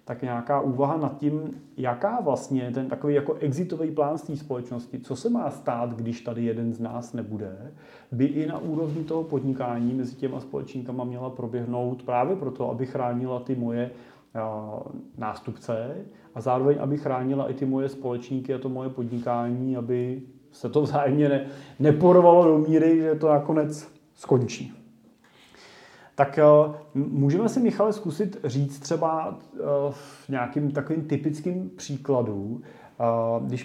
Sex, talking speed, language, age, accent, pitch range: male, 135 wpm, Czech, 30-49, native, 120-145 Hz